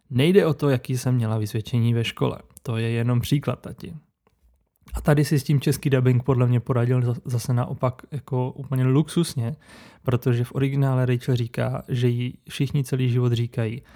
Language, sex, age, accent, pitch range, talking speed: Czech, male, 20-39, native, 120-135 Hz, 170 wpm